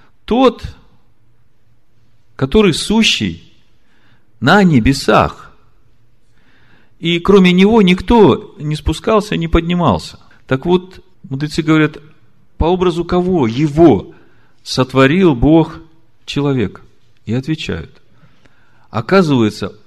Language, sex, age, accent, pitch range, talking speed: Russian, male, 50-69, native, 115-170 Hz, 80 wpm